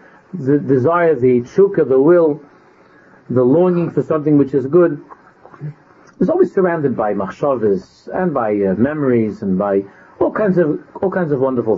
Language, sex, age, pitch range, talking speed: English, male, 50-69, 130-200 Hz, 160 wpm